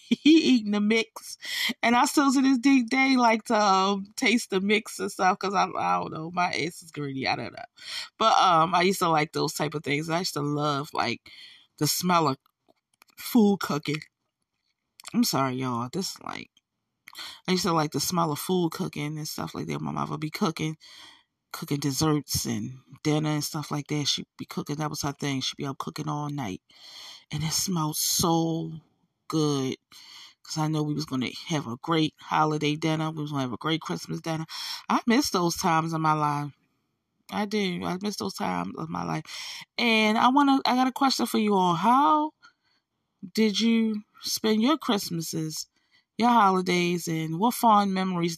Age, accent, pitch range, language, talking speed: 20-39, American, 150-210 Hz, English, 195 wpm